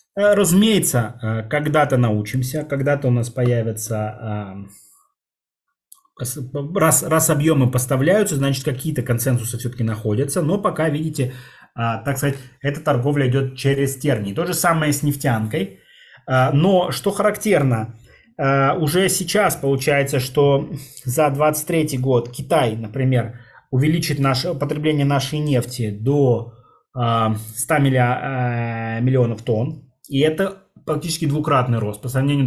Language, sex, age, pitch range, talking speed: Russian, male, 20-39, 125-160 Hz, 110 wpm